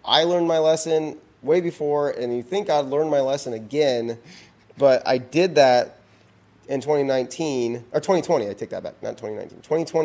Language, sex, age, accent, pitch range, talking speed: English, male, 30-49, American, 115-150 Hz, 165 wpm